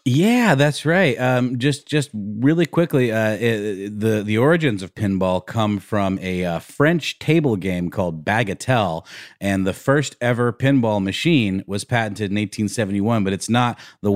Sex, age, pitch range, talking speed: male, 30-49, 95-125 Hz, 160 wpm